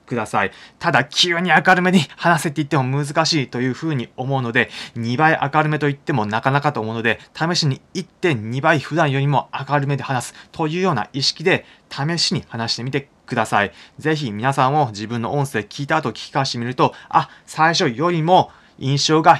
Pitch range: 115-160 Hz